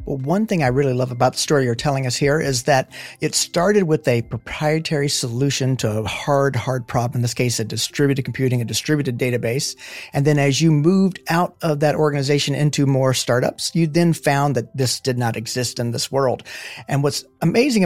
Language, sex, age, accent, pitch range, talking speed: English, male, 40-59, American, 120-155 Hz, 205 wpm